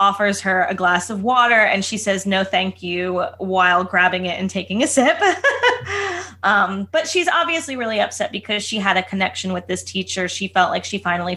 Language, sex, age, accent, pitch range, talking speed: English, female, 20-39, American, 180-210 Hz, 200 wpm